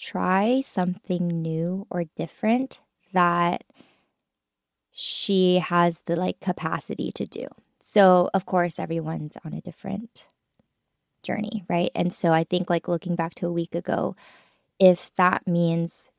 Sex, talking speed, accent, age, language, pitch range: female, 135 wpm, American, 20-39, English, 170-200 Hz